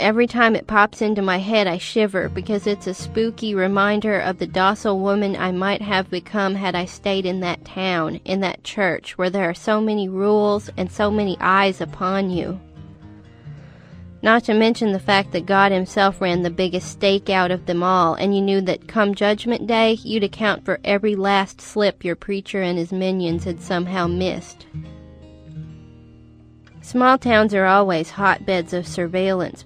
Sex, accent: female, American